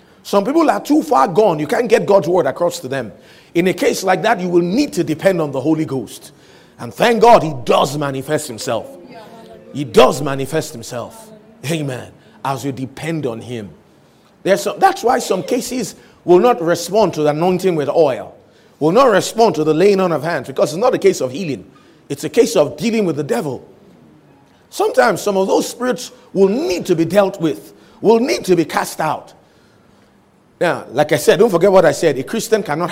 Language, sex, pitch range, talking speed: English, male, 145-205 Hz, 205 wpm